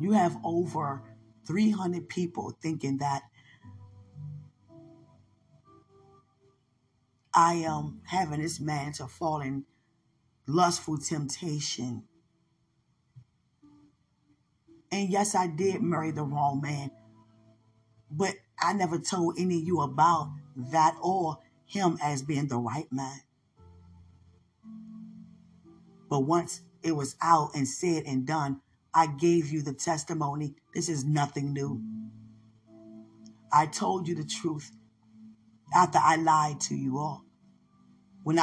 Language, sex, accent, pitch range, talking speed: English, female, American, 130-175 Hz, 110 wpm